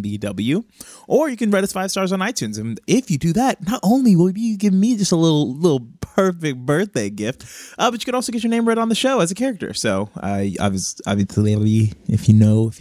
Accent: American